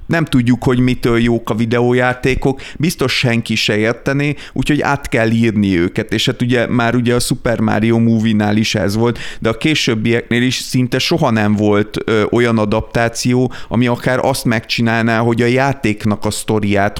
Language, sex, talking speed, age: Hungarian, male, 170 wpm, 30-49